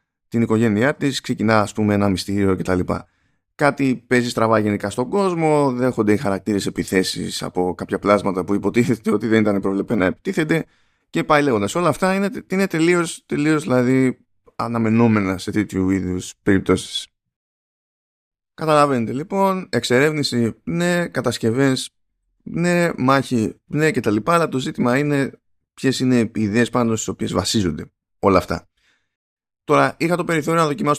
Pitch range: 100-135 Hz